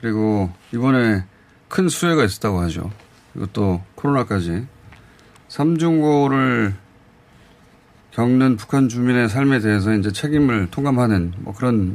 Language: Korean